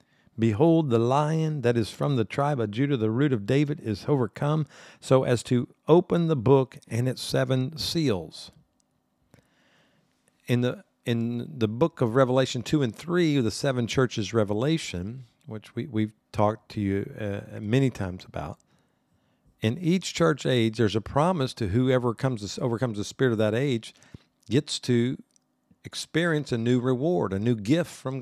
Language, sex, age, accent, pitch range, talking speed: English, male, 50-69, American, 110-140 Hz, 165 wpm